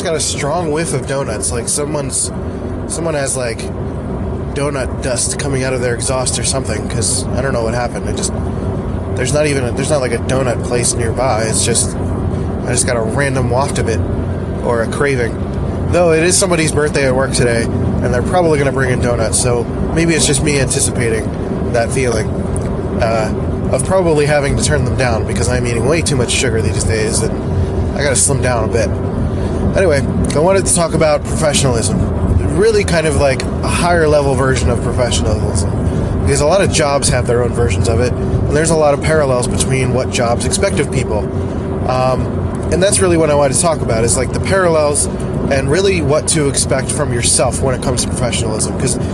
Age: 20-39